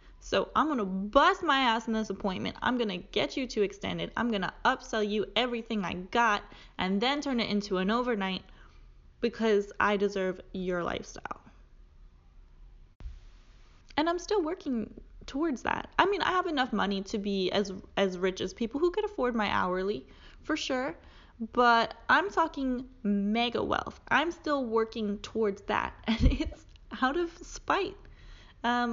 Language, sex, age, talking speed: English, female, 10-29, 165 wpm